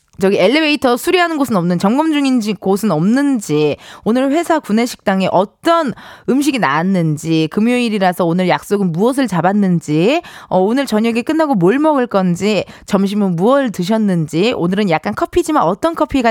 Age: 20-39